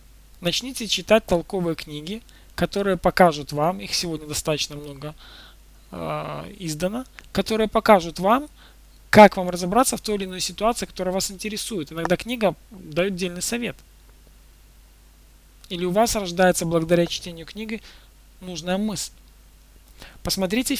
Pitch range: 150-195 Hz